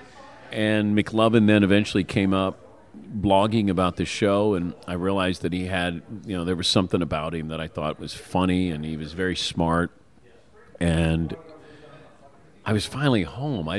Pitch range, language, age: 80-105 Hz, English, 40-59